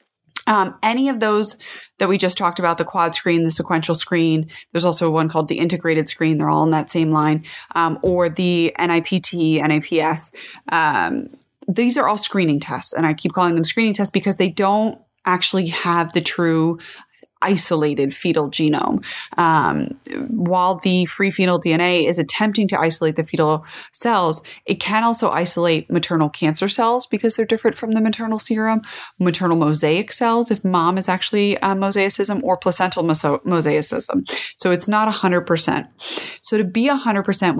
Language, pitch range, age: English, 165-205 Hz, 20-39